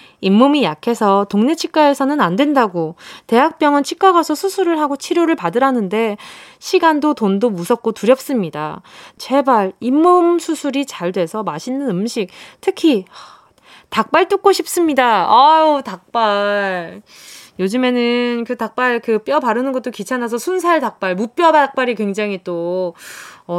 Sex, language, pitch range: female, Korean, 205-315 Hz